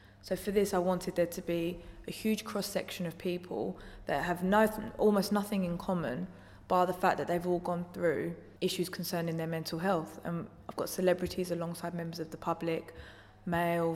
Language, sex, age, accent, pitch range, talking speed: English, female, 20-39, British, 160-180 Hz, 190 wpm